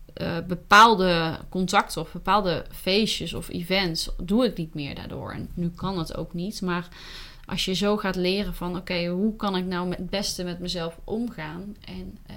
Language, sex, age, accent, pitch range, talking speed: Dutch, female, 30-49, Dutch, 180-210 Hz, 180 wpm